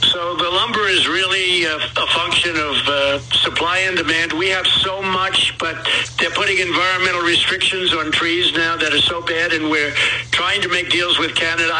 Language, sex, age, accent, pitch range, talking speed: English, male, 60-79, American, 155-175 Hz, 190 wpm